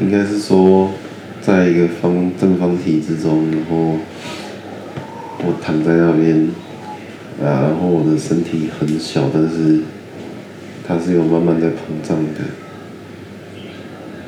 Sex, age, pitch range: male, 20-39, 80-90 Hz